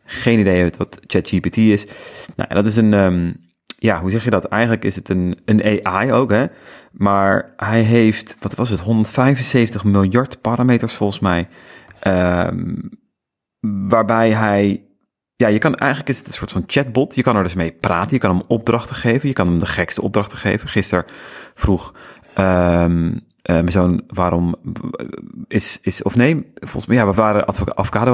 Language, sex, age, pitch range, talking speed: Dutch, male, 30-49, 90-115 Hz, 175 wpm